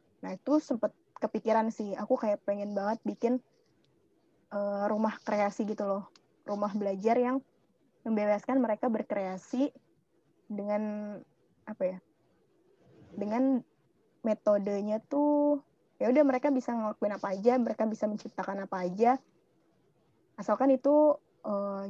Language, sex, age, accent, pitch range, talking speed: Indonesian, female, 20-39, native, 205-245 Hz, 115 wpm